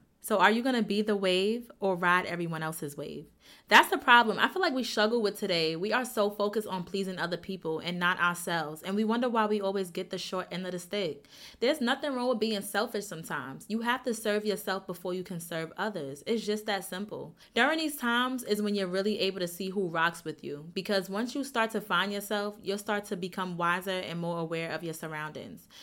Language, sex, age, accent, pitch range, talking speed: English, female, 20-39, American, 175-225 Hz, 230 wpm